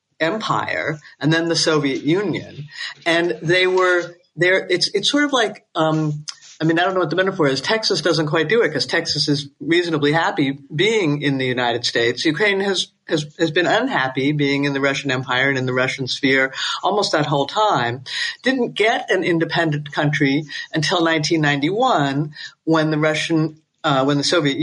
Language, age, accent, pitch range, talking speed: English, 50-69, American, 145-185 Hz, 180 wpm